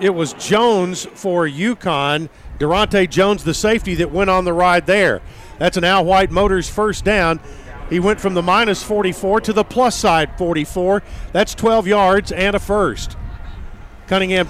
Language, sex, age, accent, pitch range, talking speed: English, male, 50-69, American, 175-205 Hz, 165 wpm